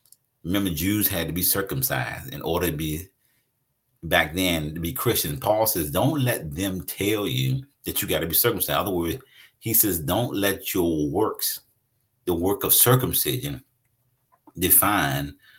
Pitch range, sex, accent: 90-130 Hz, male, American